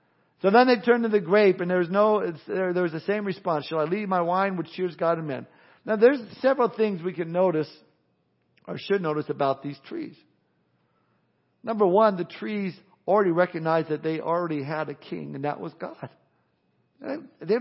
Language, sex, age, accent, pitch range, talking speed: English, male, 50-69, American, 165-205 Hz, 200 wpm